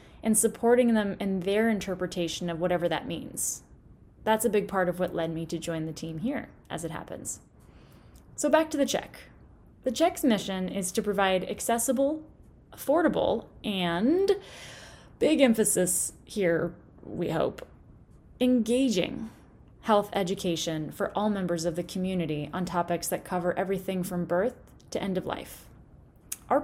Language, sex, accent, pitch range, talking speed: English, female, American, 180-245 Hz, 150 wpm